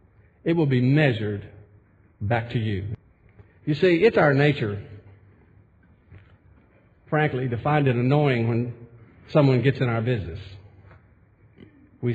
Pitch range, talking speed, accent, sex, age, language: 100-145 Hz, 120 wpm, American, male, 50-69, English